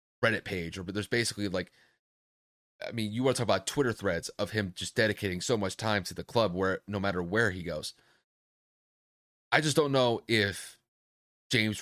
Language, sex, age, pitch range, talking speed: English, male, 30-49, 90-115 Hz, 195 wpm